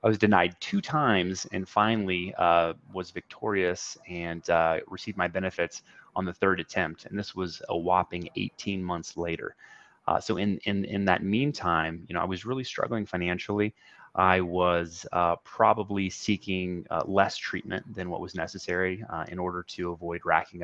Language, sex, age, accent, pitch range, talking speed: English, male, 30-49, American, 85-100 Hz, 170 wpm